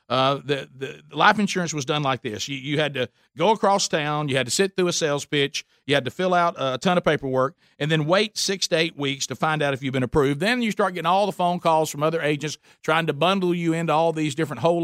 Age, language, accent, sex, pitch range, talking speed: 50-69, English, American, male, 145-190 Hz, 270 wpm